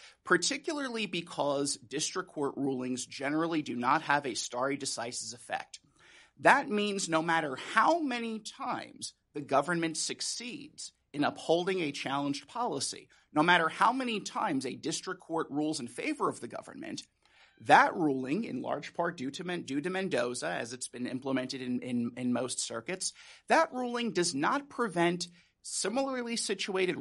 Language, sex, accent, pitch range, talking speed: English, male, American, 145-235 Hz, 150 wpm